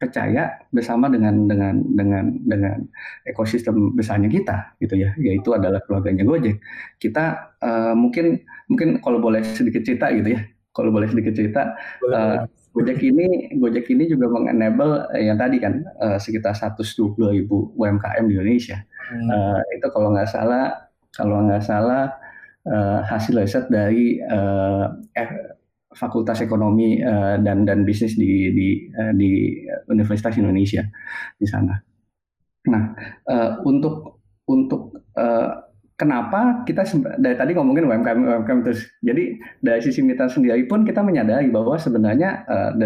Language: Indonesian